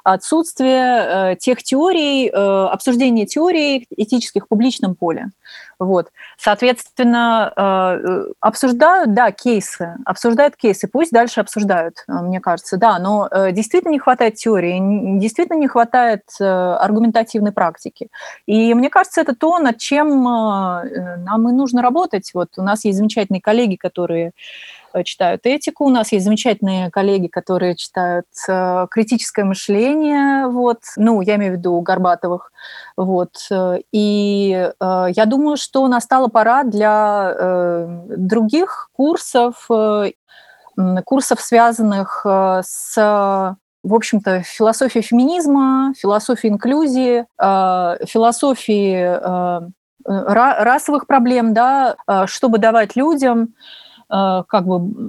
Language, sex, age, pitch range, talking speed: Russian, female, 30-49, 195-255 Hz, 110 wpm